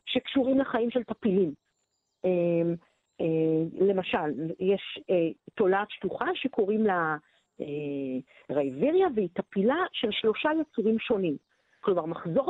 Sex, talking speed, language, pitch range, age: female, 90 wpm, Hebrew, 185-260 Hz, 50-69